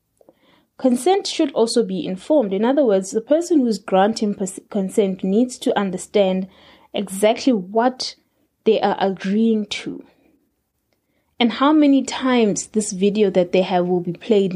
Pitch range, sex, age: 190-235 Hz, female, 20-39